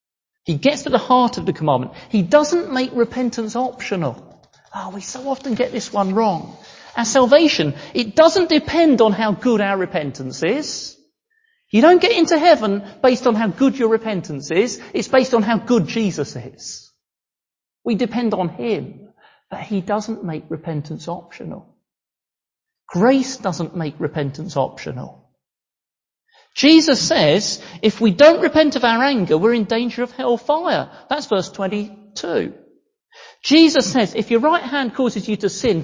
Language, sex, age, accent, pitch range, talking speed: English, male, 40-59, British, 195-285 Hz, 160 wpm